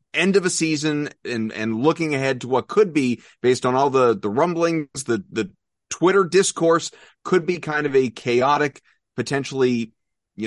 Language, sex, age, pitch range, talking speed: English, male, 30-49, 120-155 Hz, 170 wpm